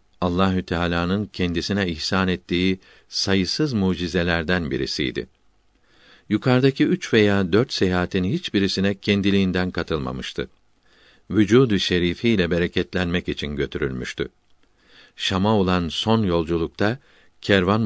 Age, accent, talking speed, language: 50-69, native, 85 wpm, Turkish